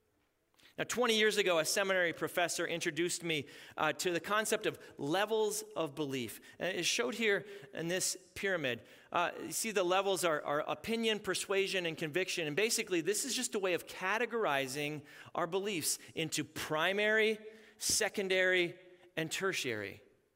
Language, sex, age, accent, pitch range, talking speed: English, male, 40-59, American, 170-235 Hz, 150 wpm